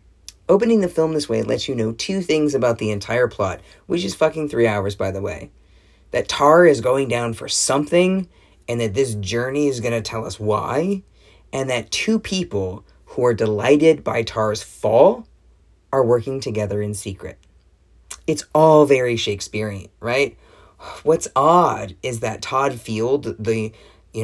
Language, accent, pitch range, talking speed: English, American, 105-140 Hz, 165 wpm